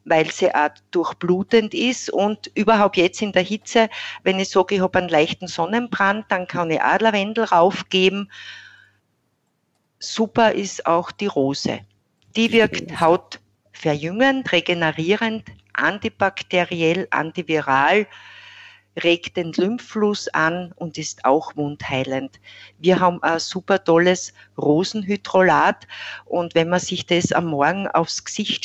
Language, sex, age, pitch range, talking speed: German, female, 50-69, 160-195 Hz, 120 wpm